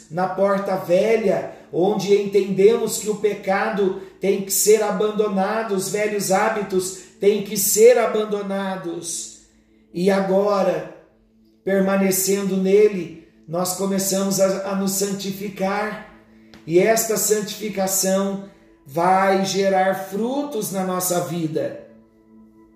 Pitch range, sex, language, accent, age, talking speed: 175-215 Hz, male, Portuguese, Brazilian, 50-69, 100 wpm